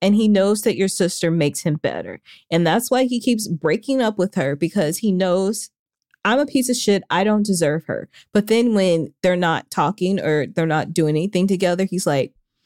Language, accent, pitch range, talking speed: English, American, 155-195 Hz, 210 wpm